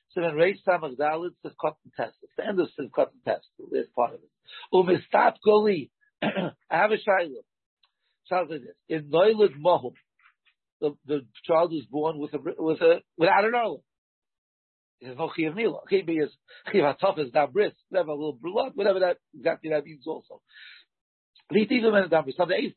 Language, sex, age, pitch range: English, male, 50-69, 150-195 Hz